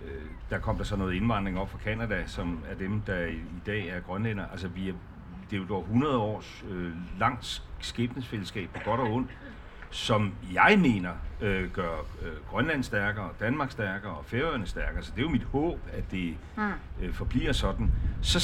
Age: 60-79